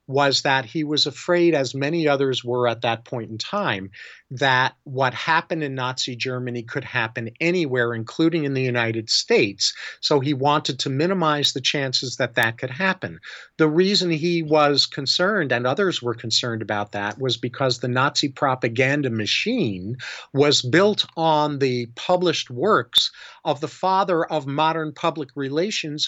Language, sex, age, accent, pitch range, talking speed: English, male, 50-69, American, 125-160 Hz, 160 wpm